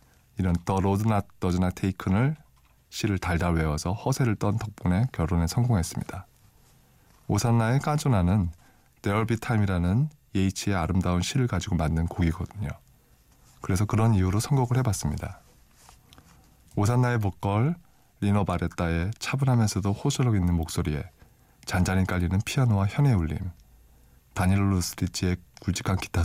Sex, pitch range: male, 90-115 Hz